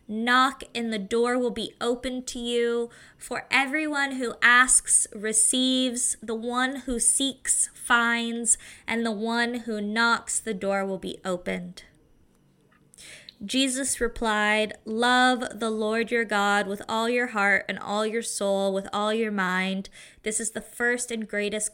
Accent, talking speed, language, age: American, 150 wpm, English, 20-39